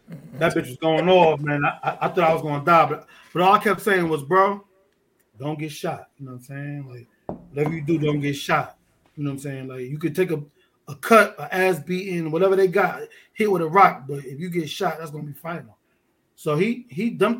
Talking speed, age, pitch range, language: 245 wpm, 20-39, 150-190 Hz, English